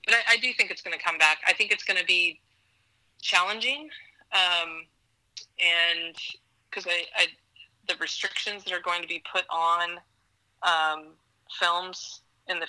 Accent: American